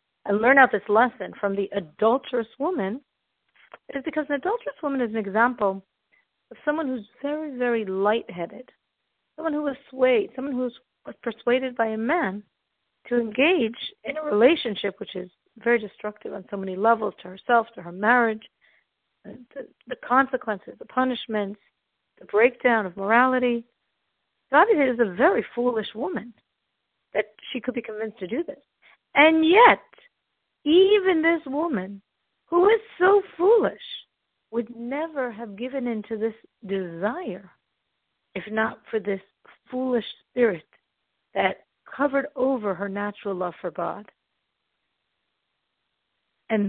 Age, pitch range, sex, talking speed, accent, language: 50-69, 205-280 Hz, female, 140 wpm, American, English